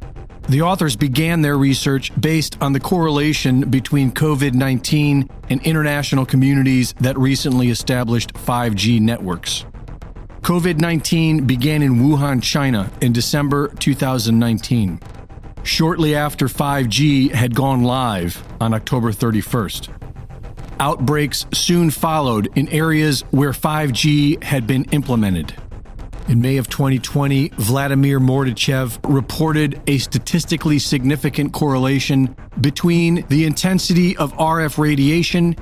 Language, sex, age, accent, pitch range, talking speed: English, male, 40-59, American, 120-150 Hz, 105 wpm